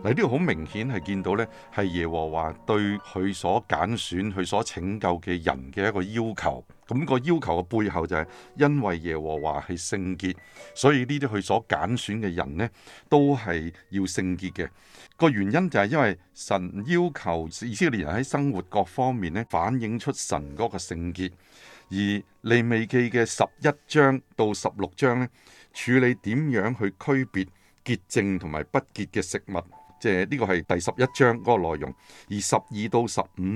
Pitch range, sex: 90-125 Hz, male